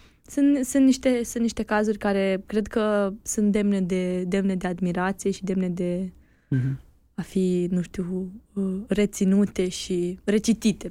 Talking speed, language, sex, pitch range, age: 140 wpm, Romanian, female, 190-225 Hz, 20-39